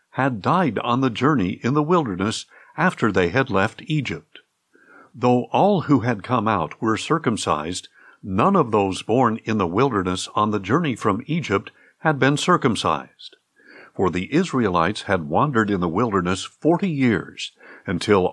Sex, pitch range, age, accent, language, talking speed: male, 105-150 Hz, 50-69, American, English, 155 wpm